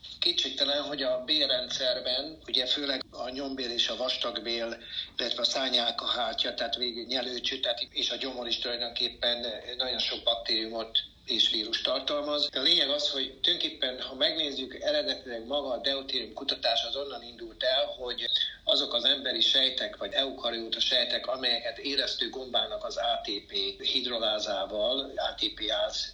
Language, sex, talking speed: Hungarian, male, 140 wpm